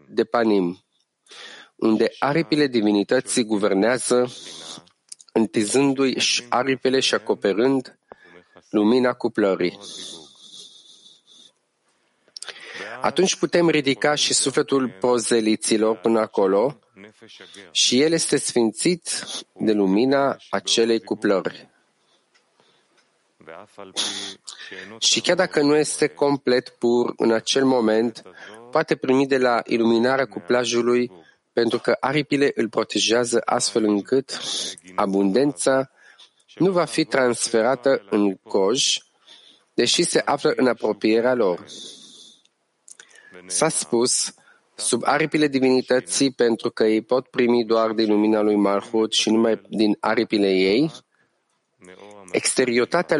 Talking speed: 95 wpm